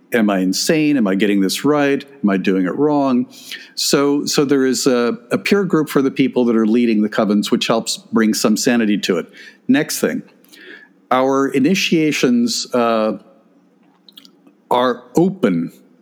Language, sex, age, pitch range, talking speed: English, male, 50-69, 115-160 Hz, 160 wpm